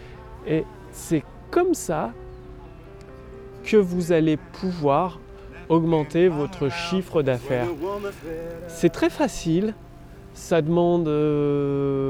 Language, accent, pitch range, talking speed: French, French, 135-175 Hz, 90 wpm